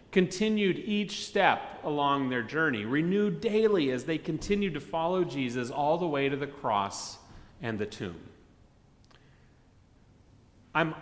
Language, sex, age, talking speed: English, male, 30-49, 130 wpm